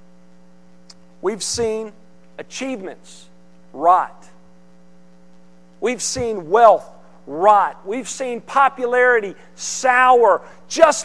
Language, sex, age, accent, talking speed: English, male, 40-59, American, 70 wpm